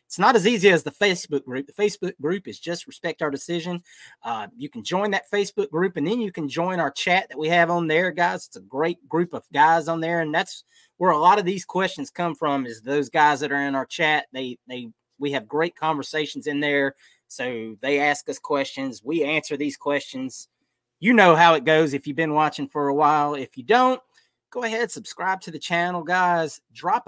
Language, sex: English, male